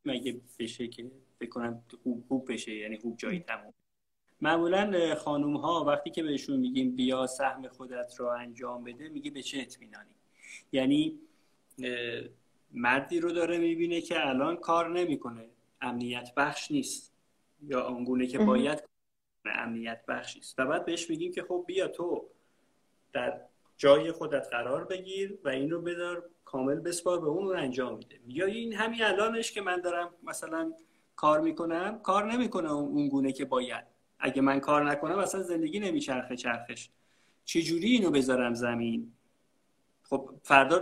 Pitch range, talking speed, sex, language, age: 125-185 Hz, 150 wpm, male, Persian, 30-49